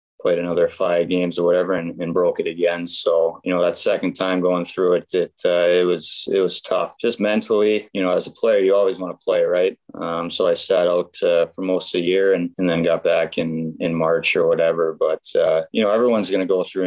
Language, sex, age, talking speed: English, male, 20-39, 245 wpm